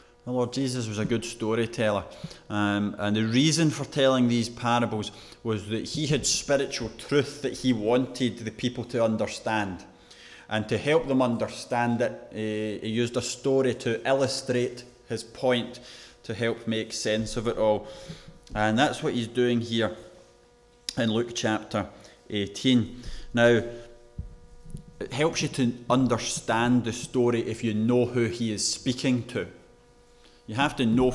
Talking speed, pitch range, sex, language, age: 150 wpm, 110-125 Hz, male, English, 20-39